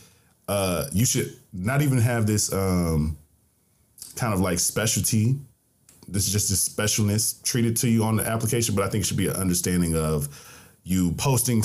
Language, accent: English, American